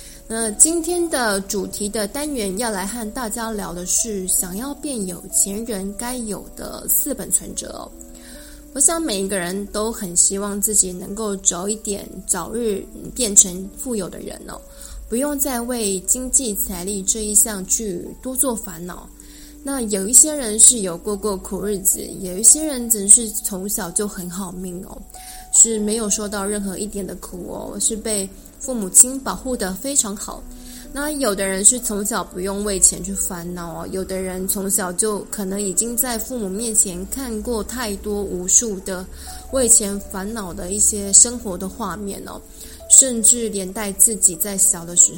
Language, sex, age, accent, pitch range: Chinese, female, 20-39, native, 190-240 Hz